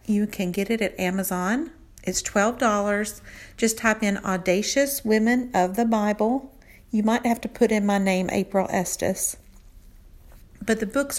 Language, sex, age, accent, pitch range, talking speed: English, female, 50-69, American, 185-240 Hz, 155 wpm